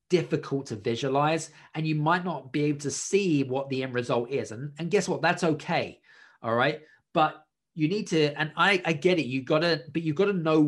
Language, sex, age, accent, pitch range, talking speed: English, male, 20-39, British, 130-160 Hz, 230 wpm